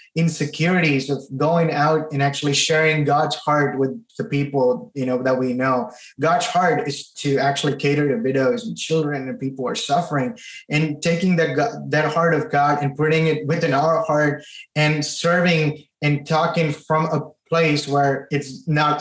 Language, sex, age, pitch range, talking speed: English, male, 20-39, 140-160 Hz, 175 wpm